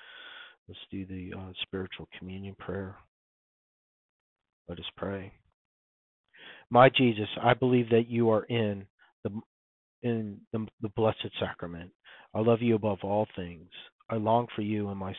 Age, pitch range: 40-59, 95-115 Hz